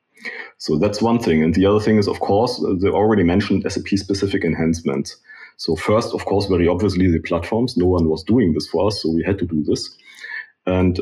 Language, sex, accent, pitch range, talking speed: English, male, German, 90-110 Hz, 205 wpm